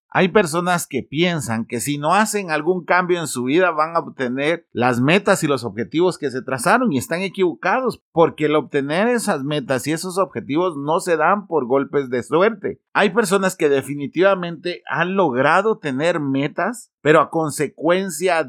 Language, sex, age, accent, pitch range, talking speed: Spanish, male, 40-59, Mexican, 140-190 Hz, 170 wpm